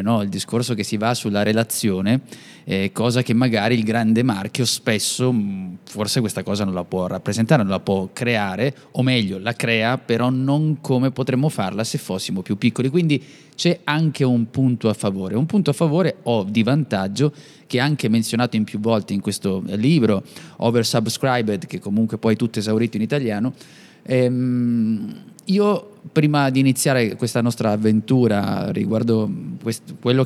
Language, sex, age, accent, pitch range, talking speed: Italian, male, 20-39, native, 110-135 Hz, 165 wpm